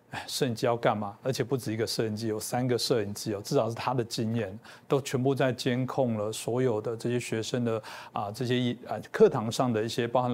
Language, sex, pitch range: Chinese, male, 110-130 Hz